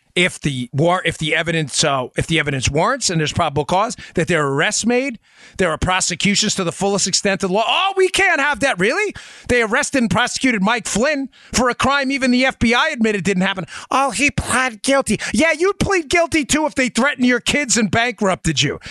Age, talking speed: 30-49, 215 wpm